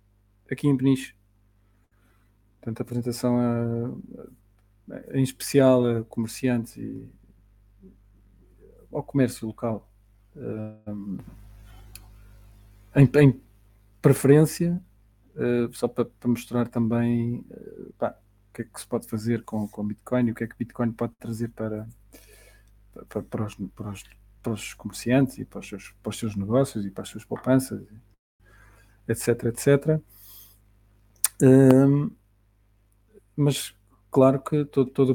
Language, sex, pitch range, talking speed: Portuguese, male, 105-130 Hz, 125 wpm